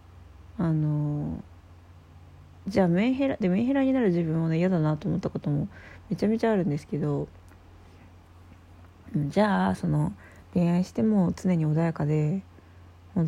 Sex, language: female, Japanese